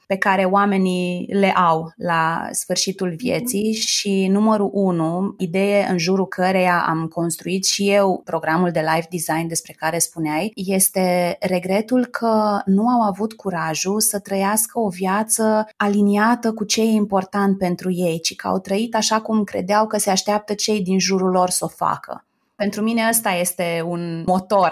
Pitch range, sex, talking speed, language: 175-210 Hz, female, 165 wpm, Romanian